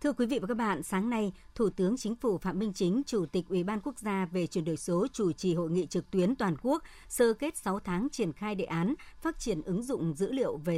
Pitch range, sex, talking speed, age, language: 175-220 Hz, male, 265 wpm, 60-79, Vietnamese